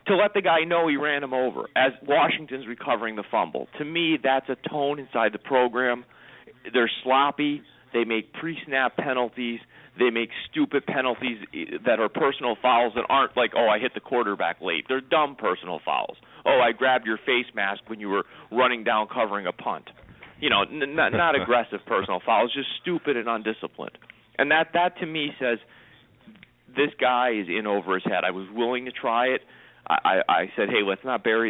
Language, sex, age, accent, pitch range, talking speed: English, male, 40-59, American, 100-130 Hz, 190 wpm